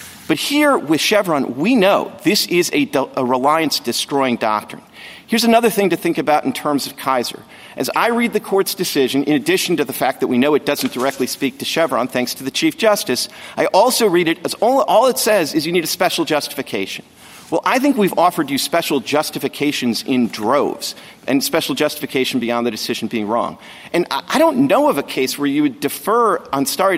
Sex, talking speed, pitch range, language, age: male, 205 wpm, 135-200 Hz, English, 50-69